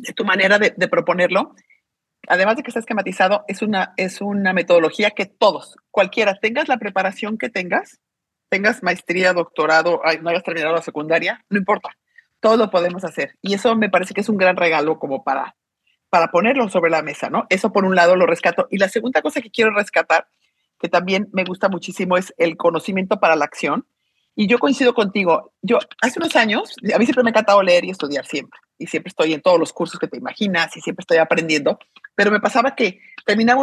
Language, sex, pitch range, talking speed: English, female, 175-230 Hz, 210 wpm